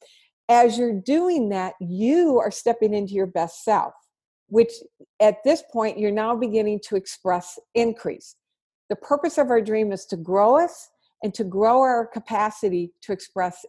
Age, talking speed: 50-69, 160 wpm